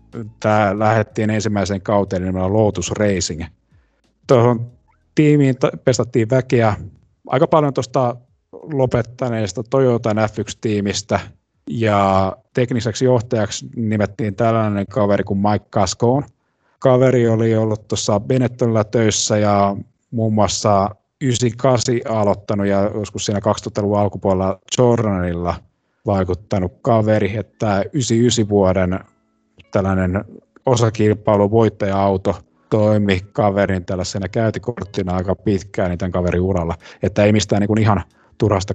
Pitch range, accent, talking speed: 95-115 Hz, native, 105 wpm